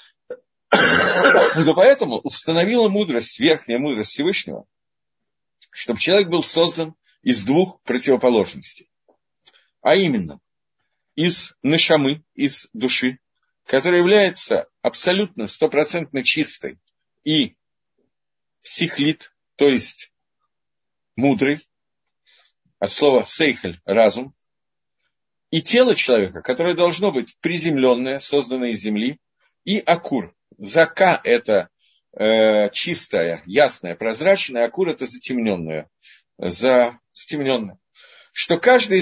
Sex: male